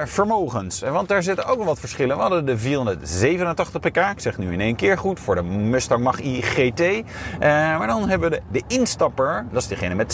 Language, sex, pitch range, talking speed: Dutch, male, 110-155 Hz, 220 wpm